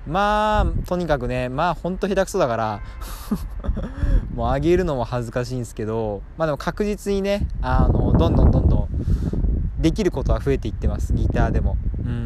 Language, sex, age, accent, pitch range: Japanese, male, 20-39, native, 100-165 Hz